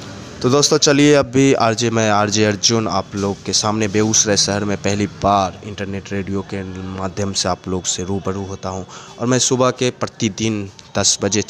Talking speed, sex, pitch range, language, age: 190 wpm, male, 100-115 Hz, Hindi, 20-39